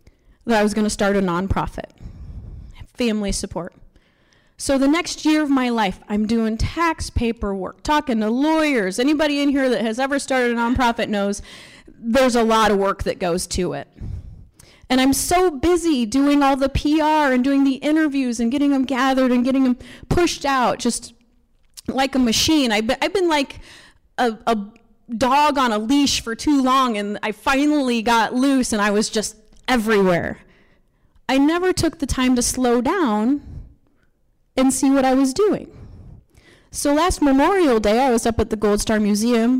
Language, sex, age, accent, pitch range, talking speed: English, female, 30-49, American, 220-285 Hz, 175 wpm